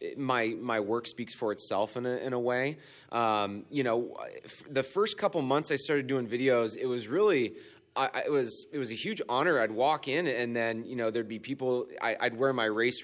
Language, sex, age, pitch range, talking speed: English, male, 30-49, 110-140 Hz, 210 wpm